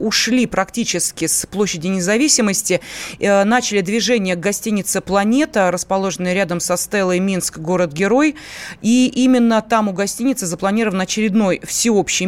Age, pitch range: 30-49, 180-220 Hz